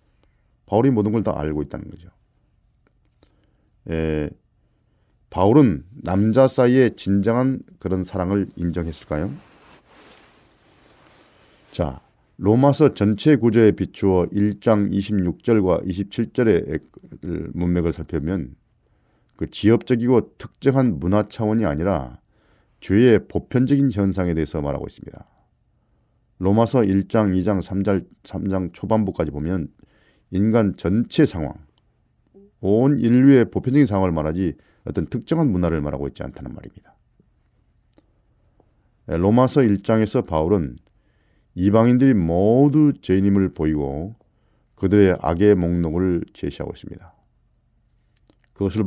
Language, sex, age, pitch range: Korean, male, 40-59, 85-115 Hz